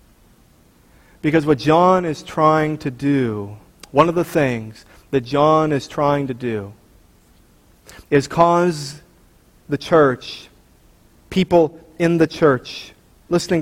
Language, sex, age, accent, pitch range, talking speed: English, male, 40-59, American, 130-175 Hz, 115 wpm